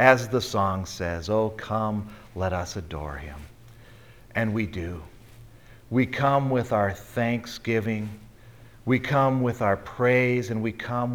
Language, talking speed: English, 140 wpm